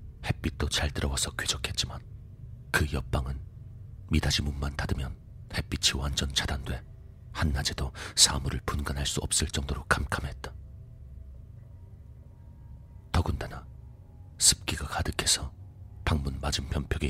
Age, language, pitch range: 40-59, Korean, 70-95 Hz